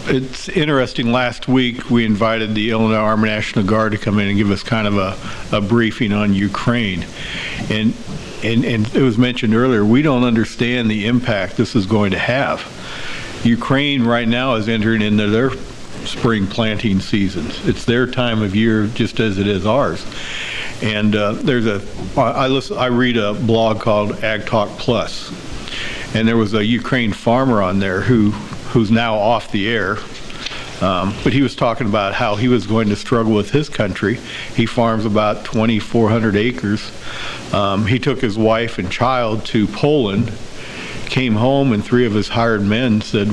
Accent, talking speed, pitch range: American, 175 wpm, 105-120 Hz